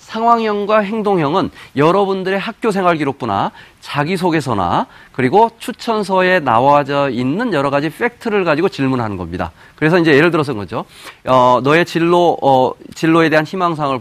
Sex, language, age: male, Korean, 40-59